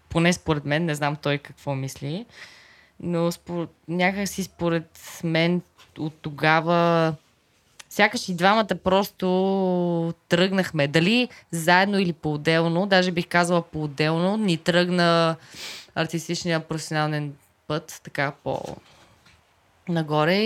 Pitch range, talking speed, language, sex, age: 150-175 Hz, 105 wpm, Bulgarian, female, 20-39